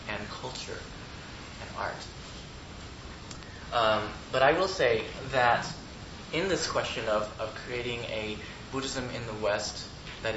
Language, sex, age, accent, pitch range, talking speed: English, male, 20-39, American, 105-140 Hz, 125 wpm